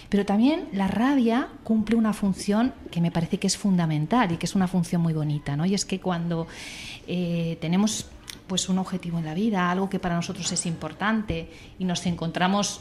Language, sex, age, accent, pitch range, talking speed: Spanish, female, 40-59, Spanish, 170-210 Hz, 195 wpm